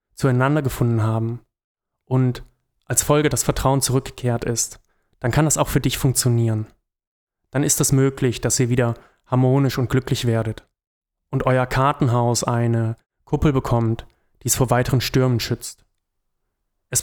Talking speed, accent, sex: 145 wpm, German, male